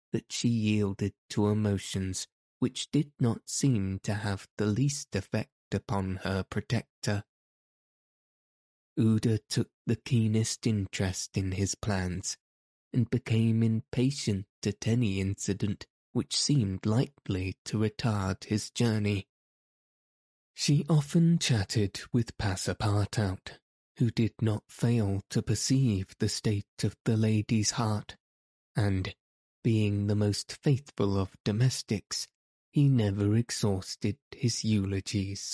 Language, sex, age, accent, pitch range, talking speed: English, male, 20-39, British, 100-120 Hz, 115 wpm